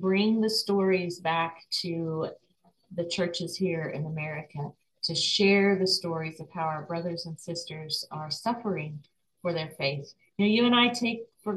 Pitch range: 165-200 Hz